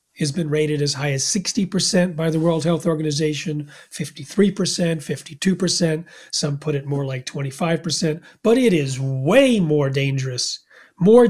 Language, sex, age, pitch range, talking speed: English, male, 40-59, 155-215 Hz, 145 wpm